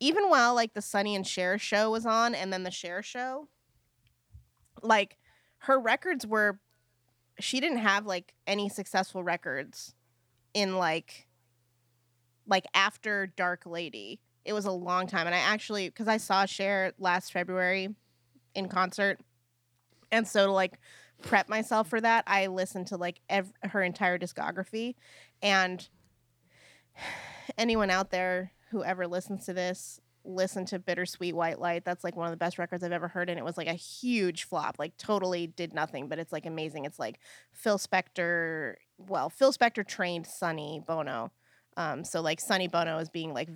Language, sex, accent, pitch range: English, female, American, 165-210 Hz